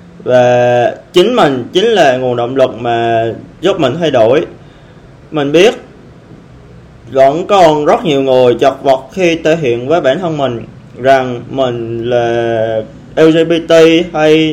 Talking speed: 135 wpm